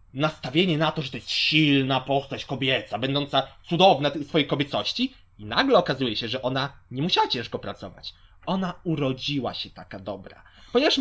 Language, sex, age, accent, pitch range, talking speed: Polish, male, 20-39, native, 130-195 Hz, 165 wpm